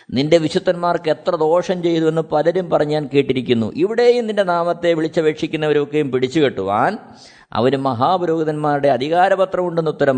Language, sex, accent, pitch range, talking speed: Malayalam, male, native, 140-225 Hz, 110 wpm